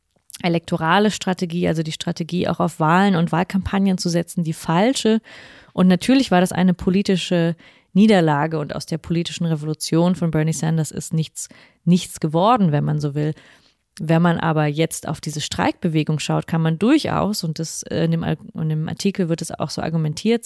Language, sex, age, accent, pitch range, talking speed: German, female, 20-39, German, 160-185 Hz, 175 wpm